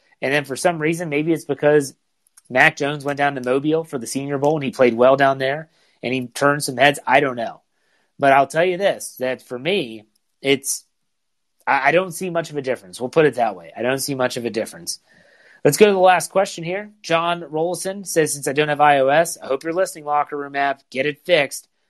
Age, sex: 30-49, male